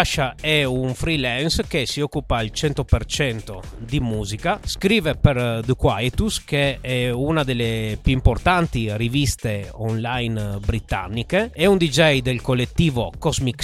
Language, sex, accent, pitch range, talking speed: Italian, male, native, 120-160 Hz, 130 wpm